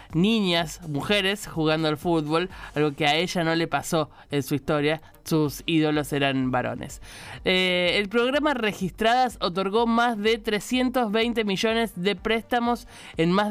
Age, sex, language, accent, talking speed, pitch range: 20-39, male, Spanish, Argentinian, 140 wpm, 160-215 Hz